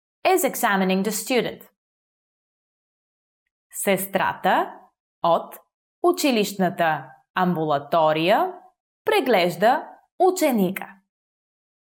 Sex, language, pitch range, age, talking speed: female, English, 190-310 Hz, 20-39, 50 wpm